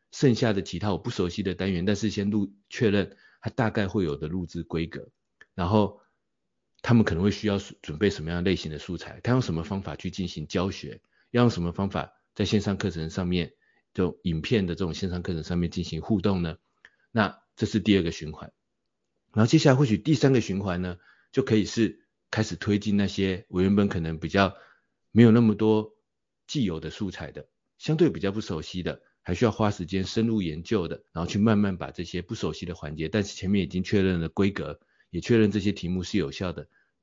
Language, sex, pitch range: Chinese, male, 85-110 Hz